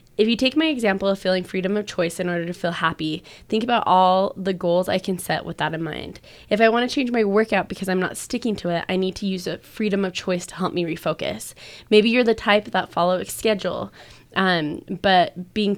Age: 20-39